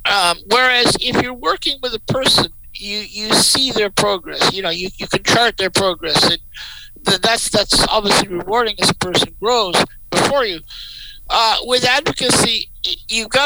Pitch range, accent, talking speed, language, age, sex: 195-230 Hz, American, 165 wpm, English, 60-79, male